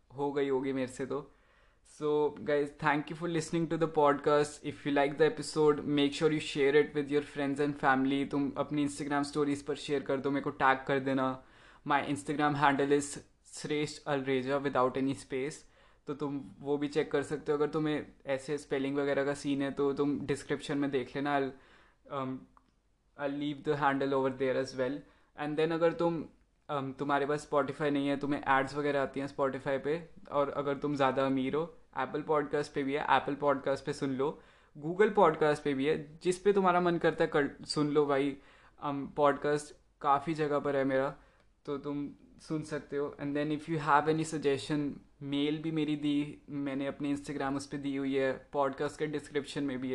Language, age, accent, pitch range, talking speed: Hindi, 20-39, native, 140-150 Hz, 195 wpm